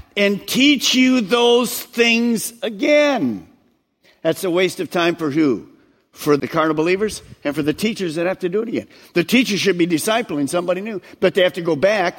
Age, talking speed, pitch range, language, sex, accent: 50-69, 195 wpm, 150-220 Hz, English, male, American